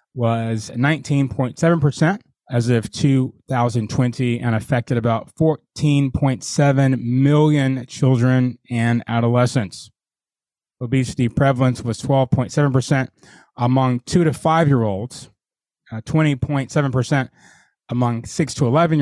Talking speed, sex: 80 wpm, male